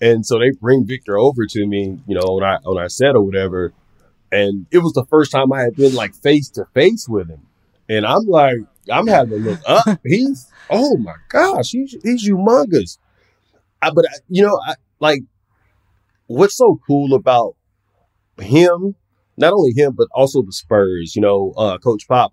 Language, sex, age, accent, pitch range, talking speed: English, male, 30-49, American, 100-135 Hz, 175 wpm